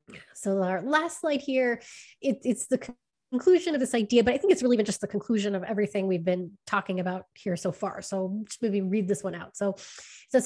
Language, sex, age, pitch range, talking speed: English, female, 20-39, 200-250 Hz, 225 wpm